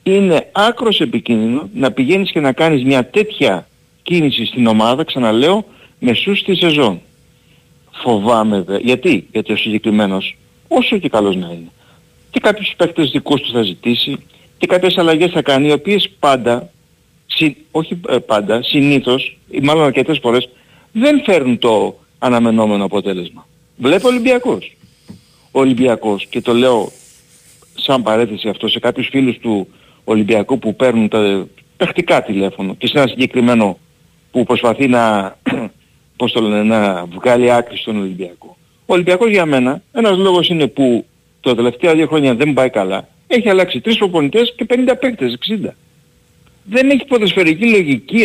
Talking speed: 145 wpm